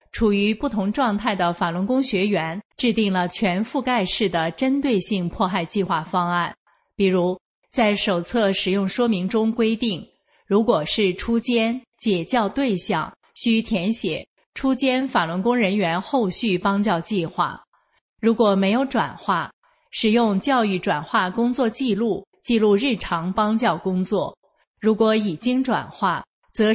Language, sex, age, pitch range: Chinese, female, 30-49, 185-235 Hz